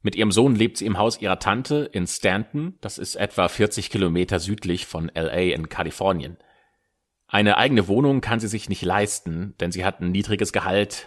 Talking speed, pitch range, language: 190 wpm, 95-115 Hz, German